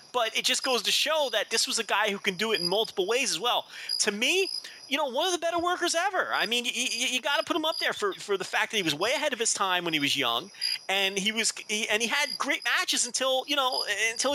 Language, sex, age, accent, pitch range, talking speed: English, male, 30-49, American, 145-230 Hz, 285 wpm